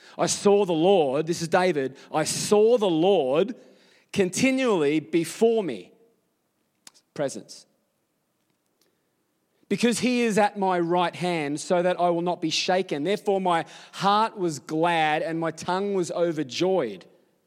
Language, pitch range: English, 160-185 Hz